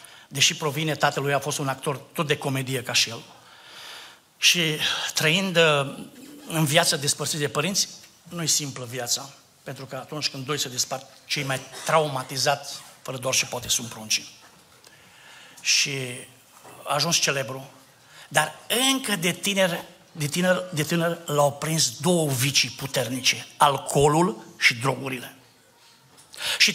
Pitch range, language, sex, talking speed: 140-185 Hz, Romanian, male, 135 wpm